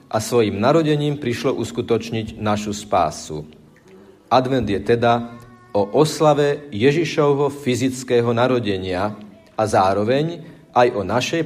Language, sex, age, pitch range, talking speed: Slovak, male, 40-59, 110-145 Hz, 105 wpm